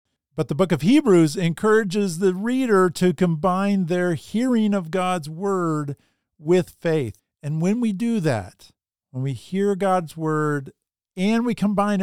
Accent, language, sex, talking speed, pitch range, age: American, English, male, 150 wpm, 130-180 Hz, 50-69